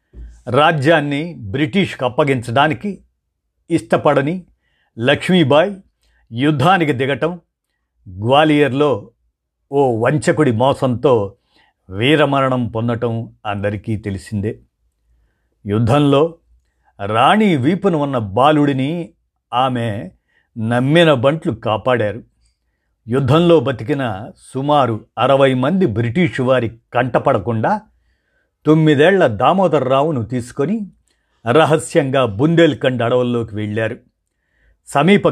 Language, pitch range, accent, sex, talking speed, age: Telugu, 110-150 Hz, native, male, 65 wpm, 50-69